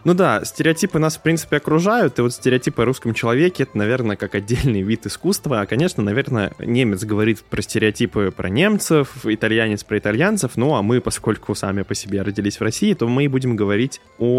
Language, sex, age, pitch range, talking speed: Russian, male, 20-39, 105-140 Hz, 195 wpm